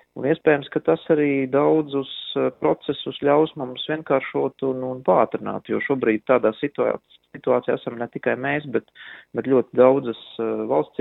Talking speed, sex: 135 wpm, male